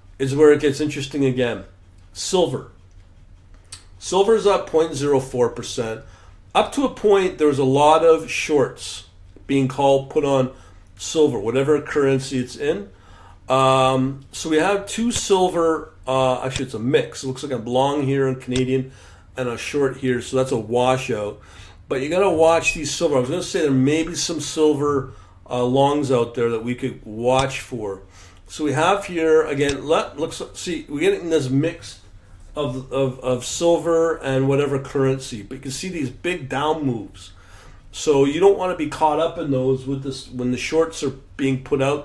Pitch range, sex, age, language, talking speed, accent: 115-150 Hz, male, 50-69, English, 185 wpm, American